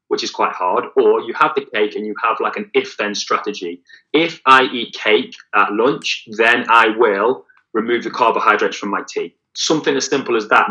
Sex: male